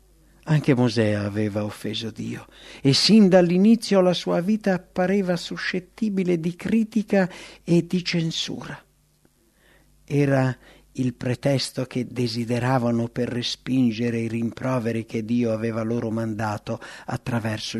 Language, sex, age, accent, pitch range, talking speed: English, male, 60-79, Italian, 115-155 Hz, 110 wpm